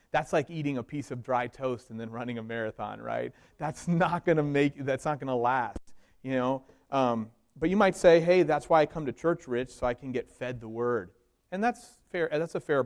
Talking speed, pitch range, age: 220 wpm, 115-145 Hz, 30-49